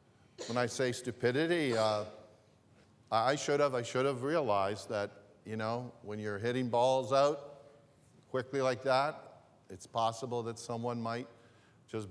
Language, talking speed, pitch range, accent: English, 145 wpm, 110-130 Hz, American